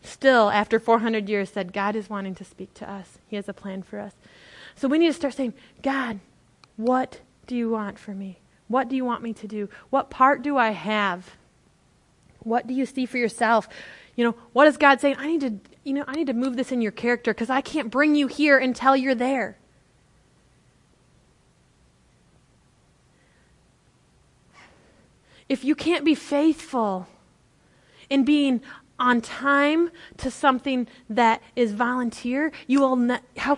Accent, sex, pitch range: American, female, 225-275 Hz